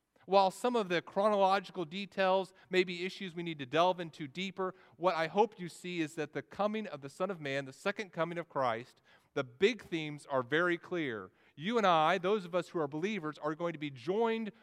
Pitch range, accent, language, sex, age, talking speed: 135-185 Hz, American, English, male, 40-59, 220 wpm